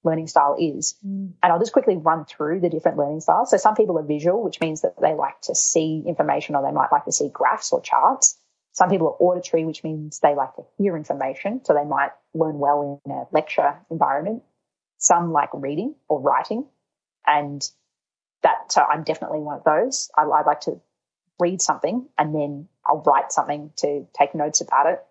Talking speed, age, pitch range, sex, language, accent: 200 wpm, 30-49, 145-180 Hz, female, English, Australian